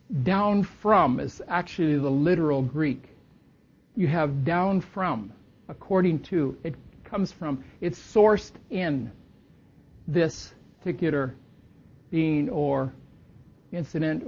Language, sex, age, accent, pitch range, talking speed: English, male, 60-79, American, 150-205 Hz, 100 wpm